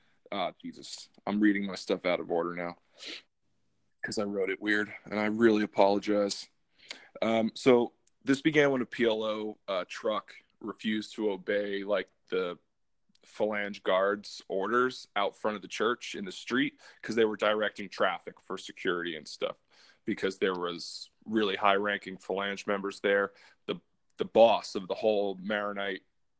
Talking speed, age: 155 wpm, 20-39